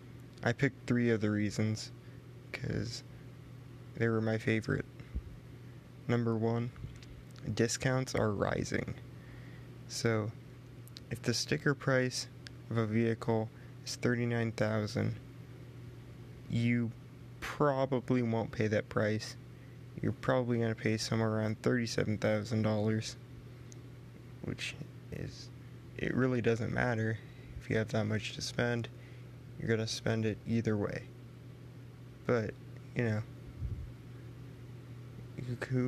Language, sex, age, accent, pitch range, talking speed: English, male, 20-39, American, 115-125 Hz, 105 wpm